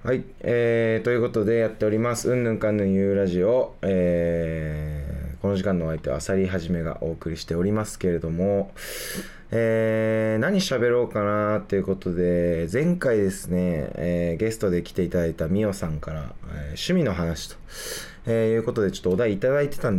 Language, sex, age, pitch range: Japanese, male, 20-39, 80-110 Hz